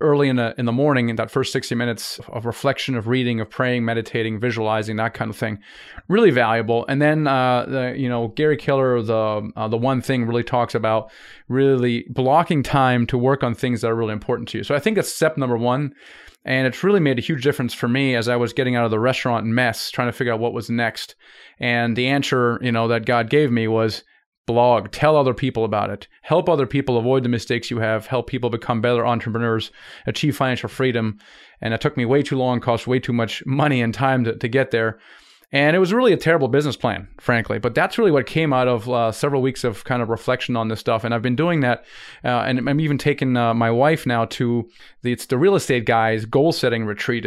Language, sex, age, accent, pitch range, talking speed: English, male, 30-49, American, 115-135 Hz, 235 wpm